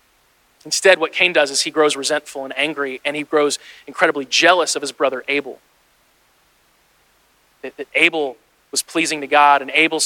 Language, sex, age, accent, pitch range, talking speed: English, male, 30-49, American, 145-170 Hz, 165 wpm